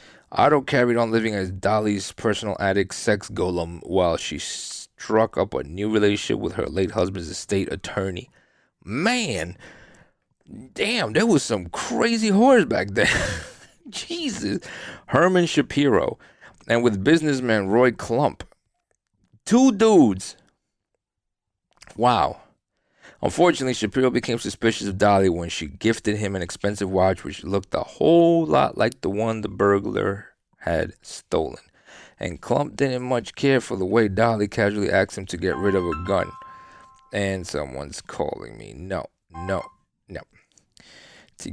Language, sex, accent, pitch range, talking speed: English, male, American, 95-120 Hz, 135 wpm